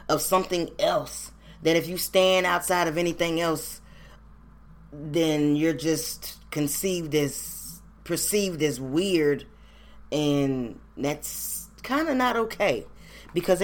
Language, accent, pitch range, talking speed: English, American, 150-190 Hz, 115 wpm